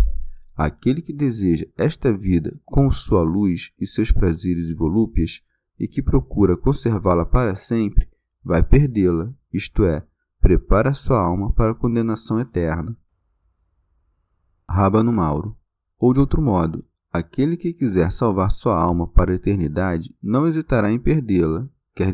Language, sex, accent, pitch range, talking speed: Portuguese, male, Brazilian, 85-120 Hz, 135 wpm